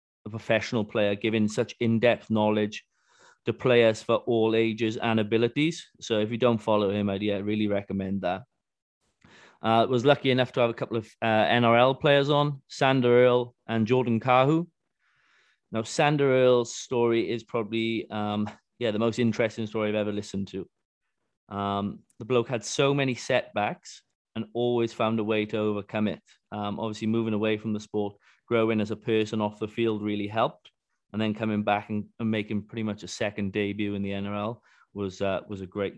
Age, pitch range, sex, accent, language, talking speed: 20-39, 105-120 Hz, male, British, English, 180 wpm